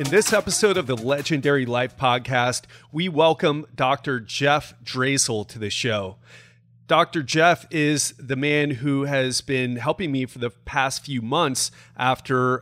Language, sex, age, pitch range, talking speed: English, male, 30-49, 120-150 Hz, 150 wpm